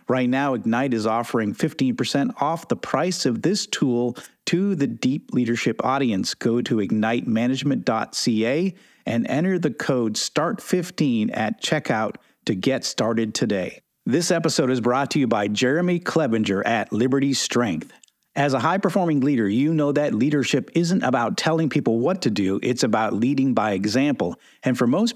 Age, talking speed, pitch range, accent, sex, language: 50-69, 155 wpm, 115-165 Hz, American, male, English